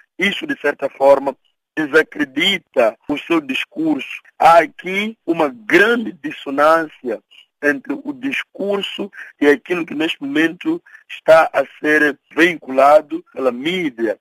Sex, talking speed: male, 115 wpm